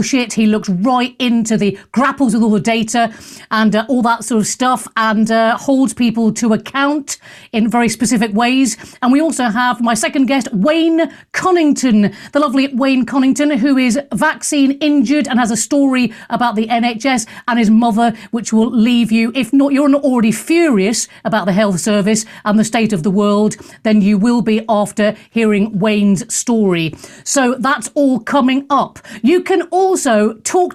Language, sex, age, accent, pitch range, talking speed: English, female, 40-59, British, 220-290 Hz, 180 wpm